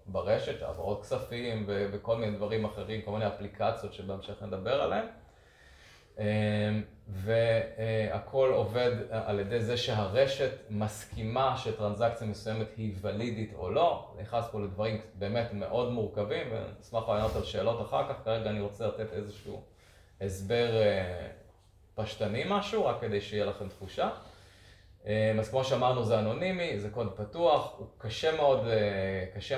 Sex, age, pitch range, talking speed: male, 20-39, 100-115 Hz, 130 wpm